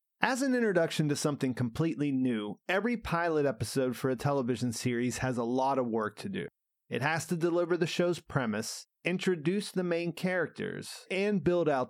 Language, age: English, 30-49